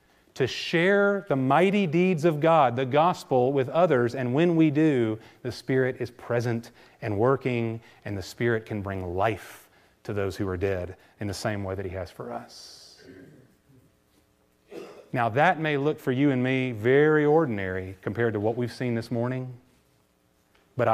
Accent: American